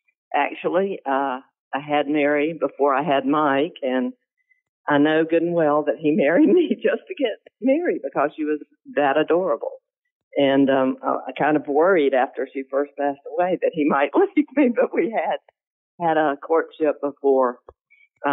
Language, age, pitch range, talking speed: English, 50-69, 130-175 Hz, 165 wpm